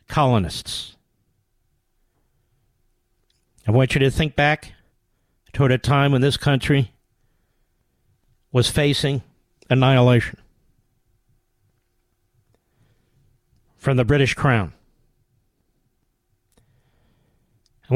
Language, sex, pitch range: English, male, 110-135 Hz